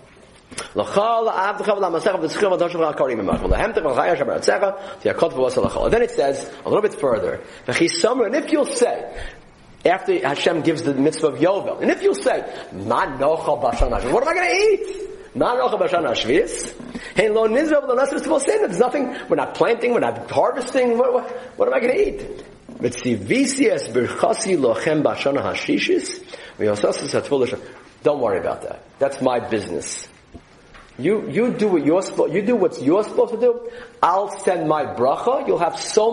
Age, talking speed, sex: 40-59, 115 wpm, male